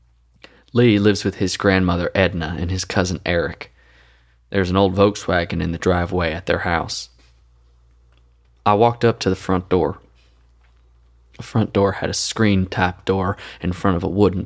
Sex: male